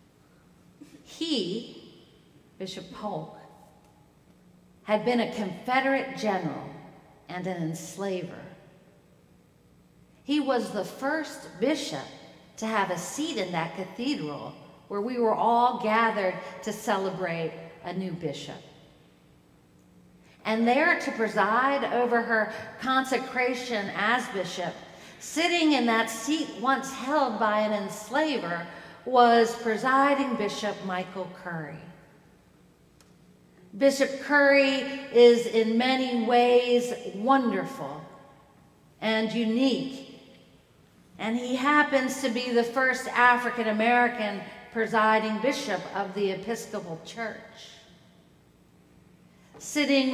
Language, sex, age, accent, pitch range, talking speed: English, female, 50-69, American, 195-260 Hz, 95 wpm